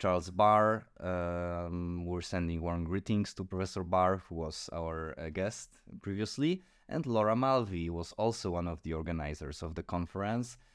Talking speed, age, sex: 150 wpm, 20-39, male